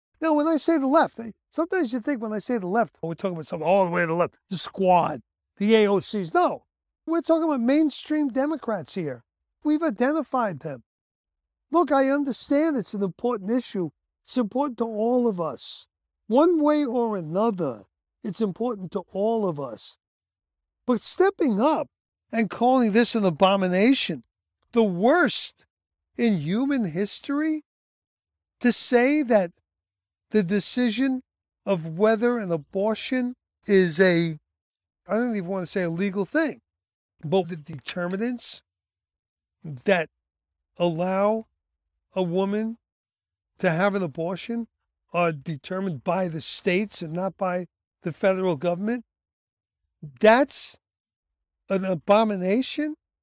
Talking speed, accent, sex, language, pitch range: 135 wpm, American, male, English, 155-240 Hz